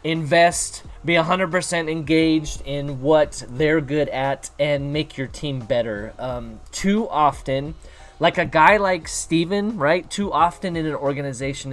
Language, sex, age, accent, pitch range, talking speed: English, male, 20-39, American, 130-160 Hz, 155 wpm